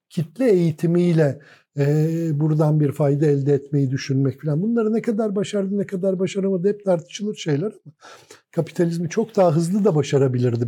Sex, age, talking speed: male, 60-79, 145 wpm